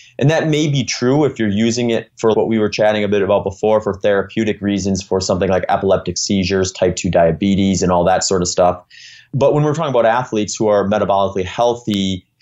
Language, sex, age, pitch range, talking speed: English, male, 30-49, 95-110 Hz, 215 wpm